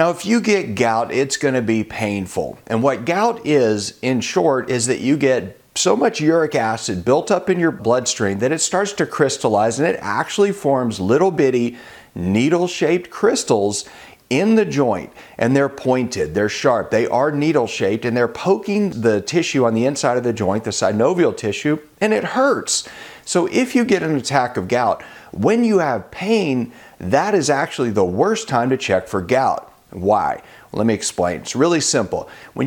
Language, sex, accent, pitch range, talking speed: English, male, American, 115-175 Hz, 180 wpm